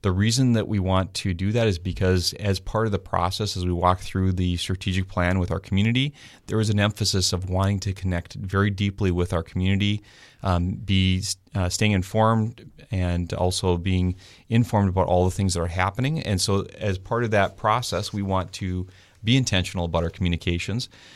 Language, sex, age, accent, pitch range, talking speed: English, male, 30-49, American, 90-105 Hz, 195 wpm